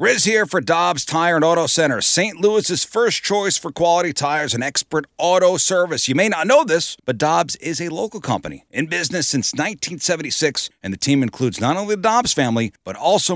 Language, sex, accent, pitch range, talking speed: English, male, American, 130-175 Hz, 200 wpm